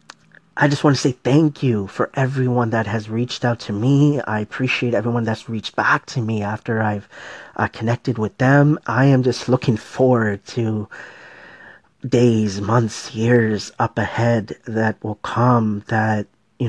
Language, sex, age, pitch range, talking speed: English, male, 30-49, 110-130 Hz, 160 wpm